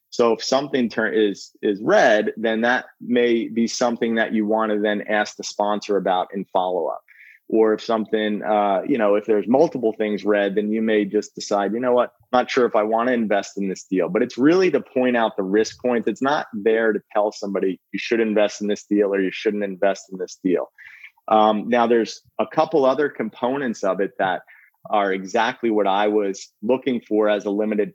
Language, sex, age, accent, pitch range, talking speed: English, male, 30-49, American, 105-115 Hz, 215 wpm